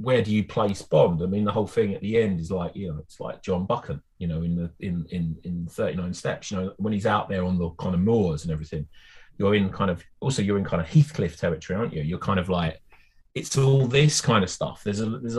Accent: British